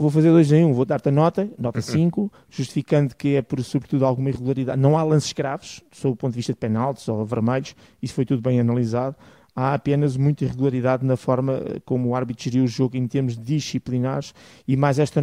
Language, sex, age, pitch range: Portuguese, male, 20-39, 125-145 Hz